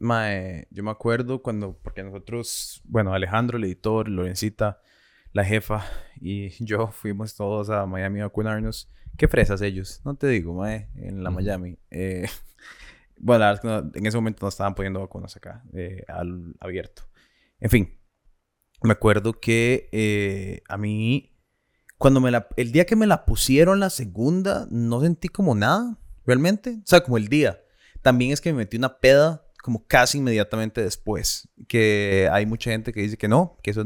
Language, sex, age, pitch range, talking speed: Spanish, male, 20-39, 100-135 Hz, 170 wpm